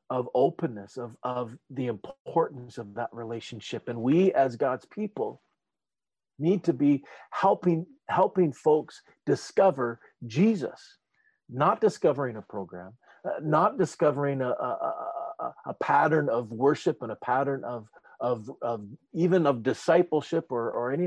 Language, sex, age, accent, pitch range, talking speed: English, male, 50-69, American, 115-160 Hz, 135 wpm